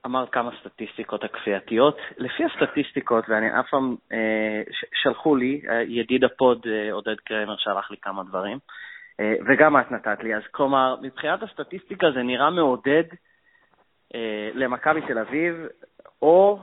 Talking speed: 135 wpm